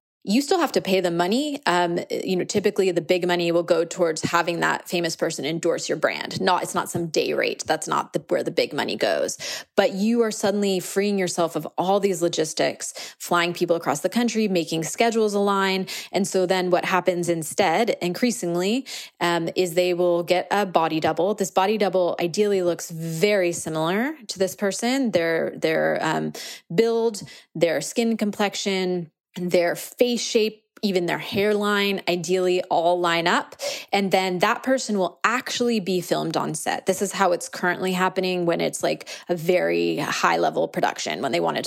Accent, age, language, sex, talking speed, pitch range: American, 20-39, English, female, 185 wpm, 175-210 Hz